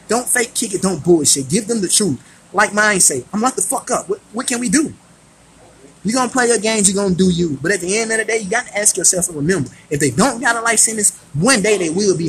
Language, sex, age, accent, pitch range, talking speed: English, male, 20-39, American, 165-230 Hz, 290 wpm